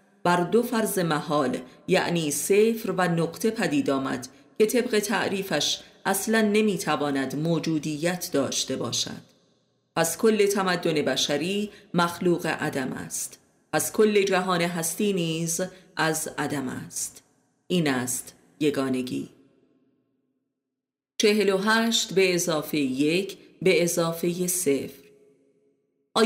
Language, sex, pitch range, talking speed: Persian, female, 145-200 Hz, 100 wpm